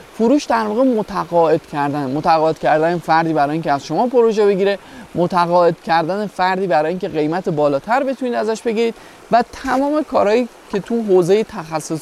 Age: 20-39